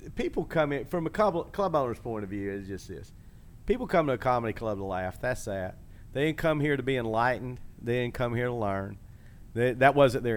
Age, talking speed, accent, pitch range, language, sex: 50-69, 235 wpm, American, 110-140 Hz, English, male